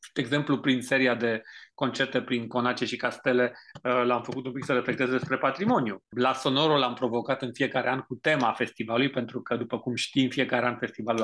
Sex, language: male, Romanian